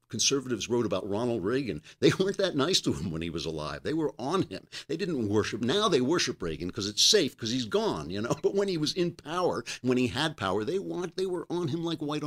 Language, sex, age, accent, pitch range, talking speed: English, male, 50-69, American, 95-135 Hz, 255 wpm